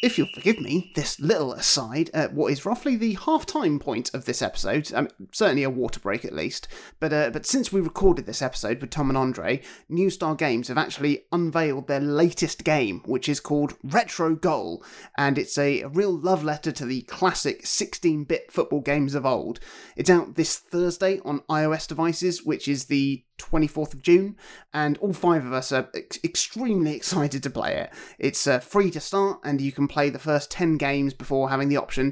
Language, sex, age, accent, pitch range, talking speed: English, male, 30-49, British, 135-170 Hz, 200 wpm